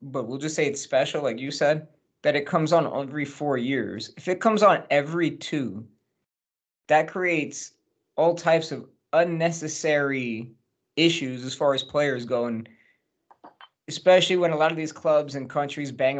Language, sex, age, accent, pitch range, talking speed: English, male, 20-39, American, 140-175 Hz, 165 wpm